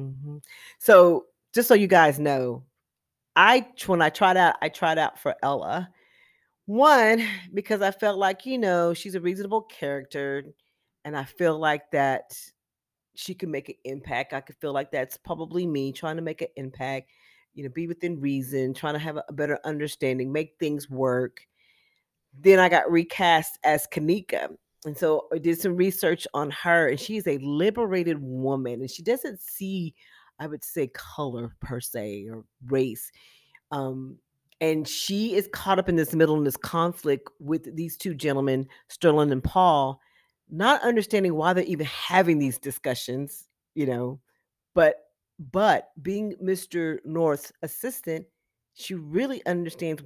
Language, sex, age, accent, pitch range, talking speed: English, female, 40-59, American, 140-185 Hz, 160 wpm